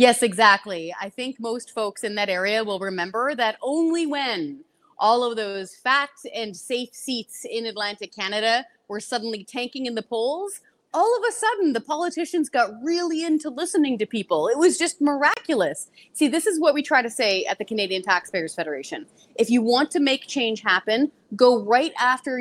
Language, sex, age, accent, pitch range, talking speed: English, female, 30-49, American, 200-290 Hz, 185 wpm